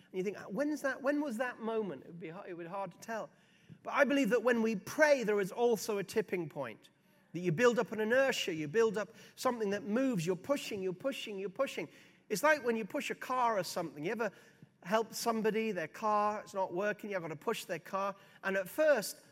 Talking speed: 235 wpm